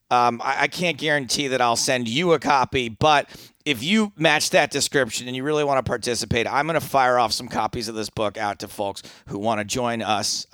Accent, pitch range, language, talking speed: American, 120-165 Hz, English, 235 wpm